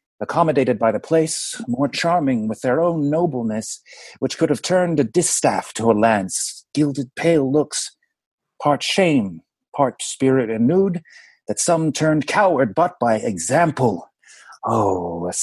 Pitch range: 125-175 Hz